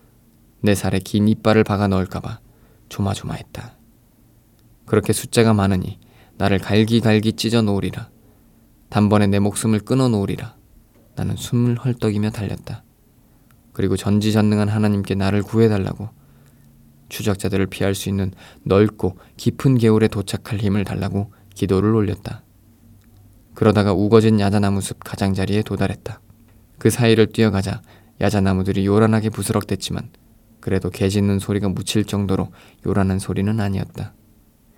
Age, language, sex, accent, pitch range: 20-39, Korean, male, native, 100-115 Hz